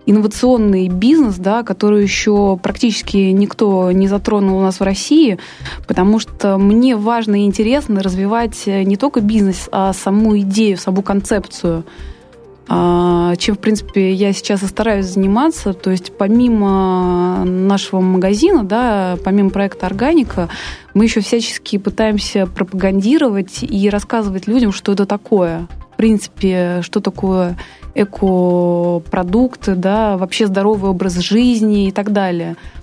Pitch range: 185-215 Hz